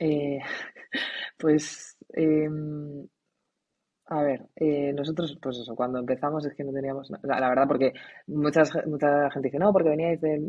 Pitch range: 130-150 Hz